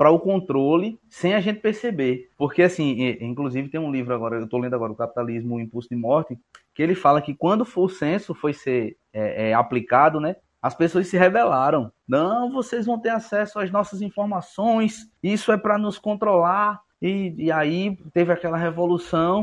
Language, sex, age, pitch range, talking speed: Portuguese, male, 20-39, 130-195 Hz, 185 wpm